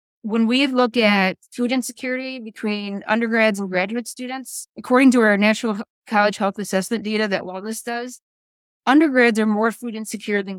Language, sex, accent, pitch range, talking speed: English, female, American, 205-245 Hz, 160 wpm